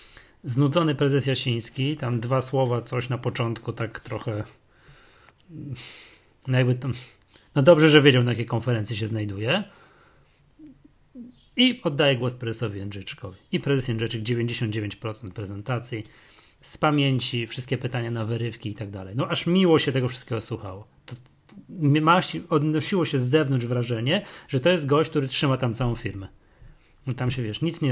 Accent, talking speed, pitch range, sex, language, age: native, 150 wpm, 115-145 Hz, male, Polish, 30-49